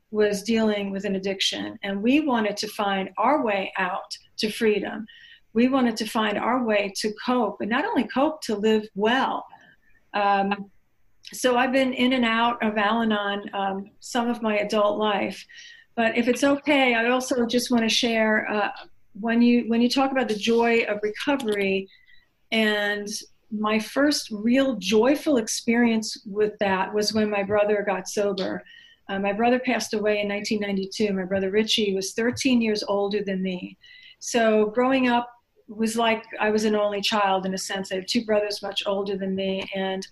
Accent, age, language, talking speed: American, 40-59, English, 170 wpm